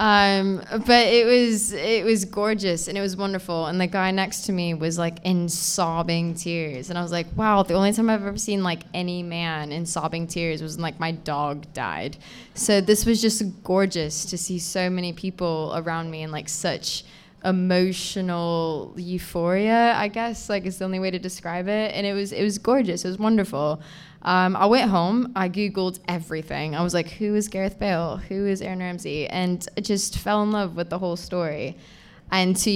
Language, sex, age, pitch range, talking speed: English, female, 10-29, 170-200 Hz, 205 wpm